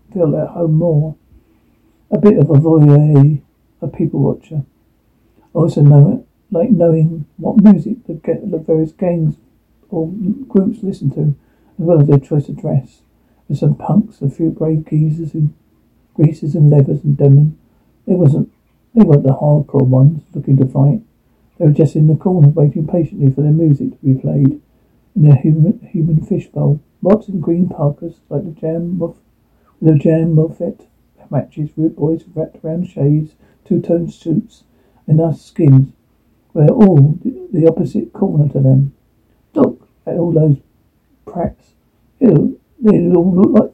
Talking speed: 160 wpm